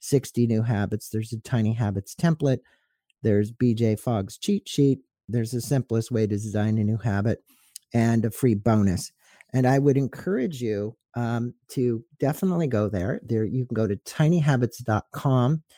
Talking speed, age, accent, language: 160 wpm, 50-69, American, English